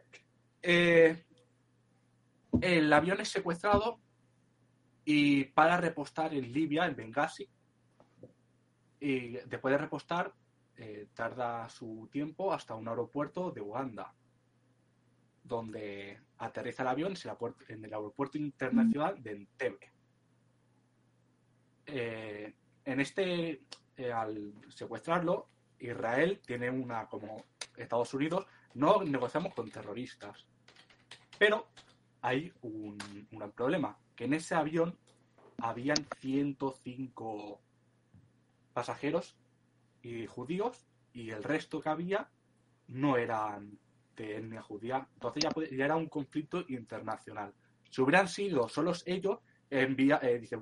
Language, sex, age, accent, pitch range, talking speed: Spanish, male, 20-39, Spanish, 115-155 Hz, 105 wpm